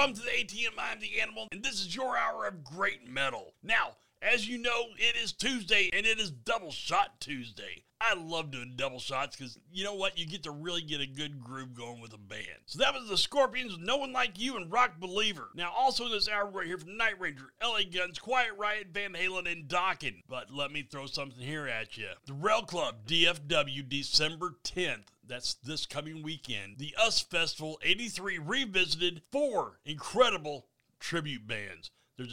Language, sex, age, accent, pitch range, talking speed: English, male, 40-59, American, 135-215 Hz, 195 wpm